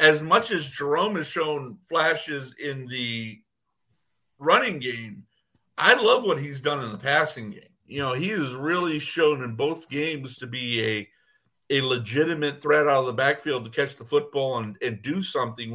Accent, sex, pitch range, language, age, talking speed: American, male, 125-155 Hz, English, 50-69, 180 wpm